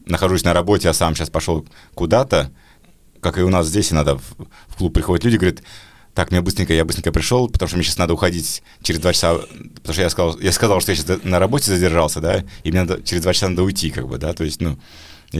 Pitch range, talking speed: 85-100 Hz, 250 wpm